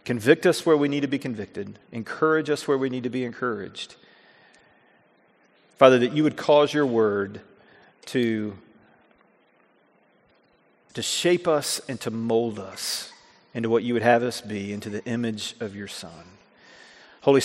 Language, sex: English, male